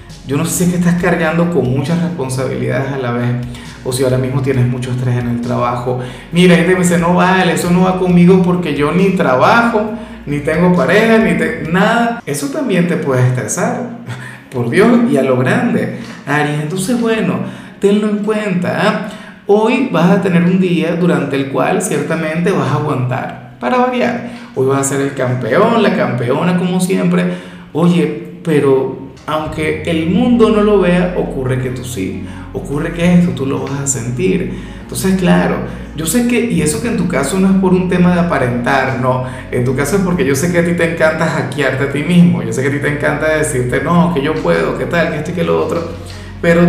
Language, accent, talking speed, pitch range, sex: Spanish, Venezuelan, 210 wpm, 130-185 Hz, male